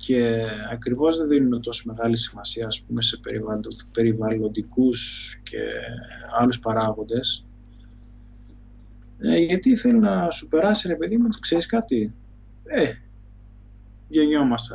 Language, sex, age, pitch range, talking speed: Greek, male, 20-39, 110-130 Hz, 110 wpm